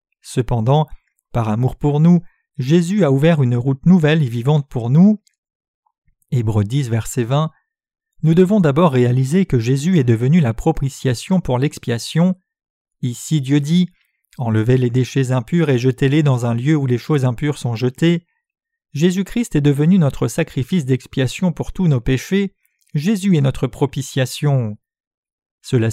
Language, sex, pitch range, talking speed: French, male, 130-160 Hz, 155 wpm